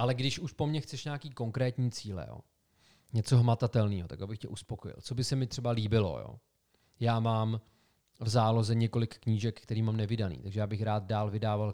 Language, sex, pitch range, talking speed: Czech, male, 105-125 Hz, 195 wpm